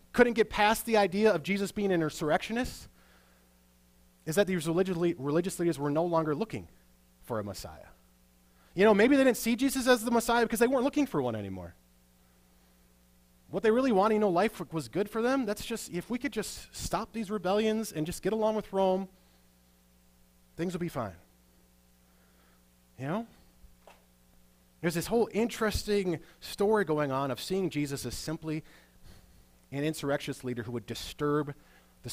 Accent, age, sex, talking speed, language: American, 30-49, male, 170 wpm, English